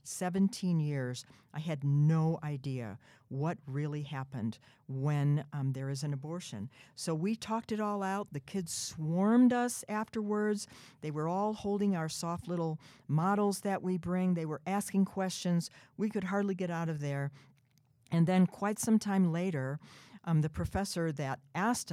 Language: English